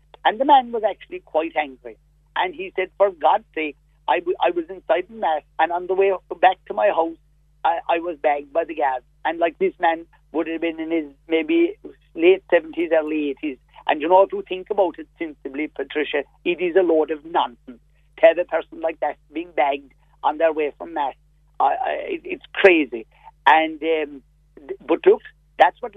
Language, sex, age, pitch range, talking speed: English, male, 50-69, 155-205 Hz, 195 wpm